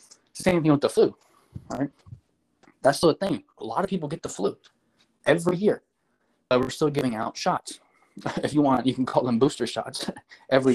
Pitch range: 120-150 Hz